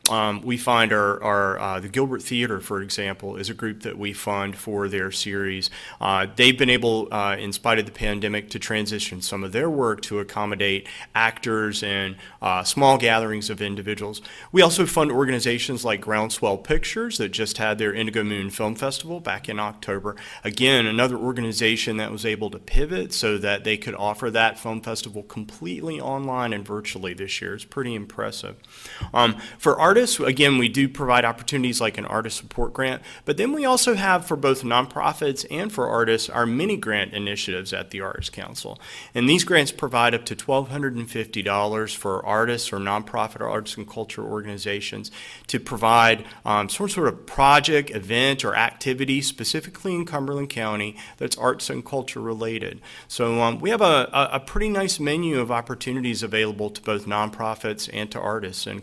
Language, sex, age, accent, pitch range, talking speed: English, male, 30-49, American, 105-130 Hz, 175 wpm